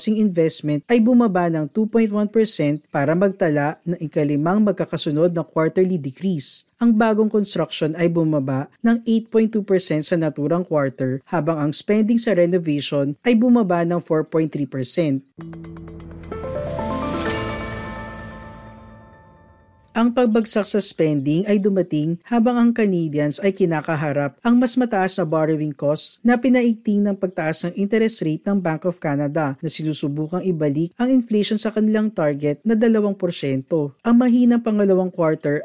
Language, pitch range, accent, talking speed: Filipino, 150-215 Hz, native, 125 wpm